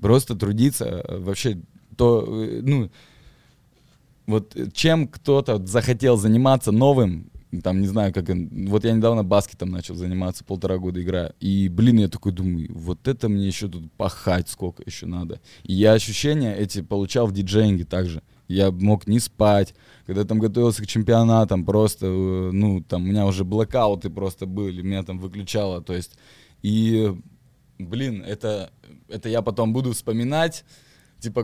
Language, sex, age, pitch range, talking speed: Russian, male, 20-39, 95-115 Hz, 150 wpm